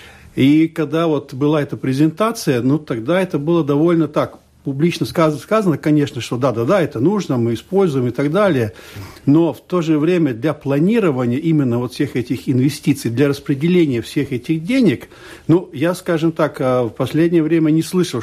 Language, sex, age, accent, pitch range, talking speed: Russian, male, 60-79, native, 130-165 Hz, 170 wpm